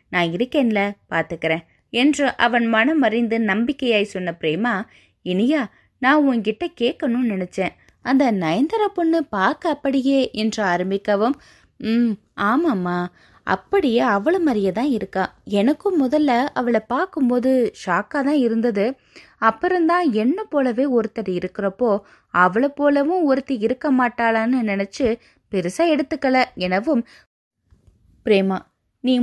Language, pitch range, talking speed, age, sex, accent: Tamil, 195-265 Hz, 105 wpm, 20-39, female, native